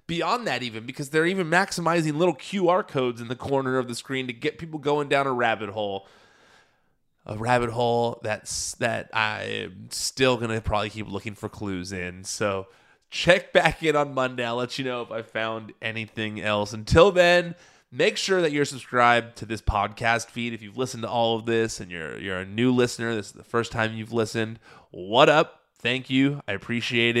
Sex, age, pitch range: male, 20-39, 105-130 Hz